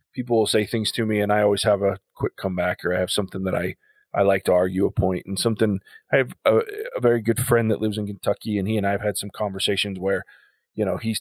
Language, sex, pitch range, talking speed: English, male, 105-125 Hz, 270 wpm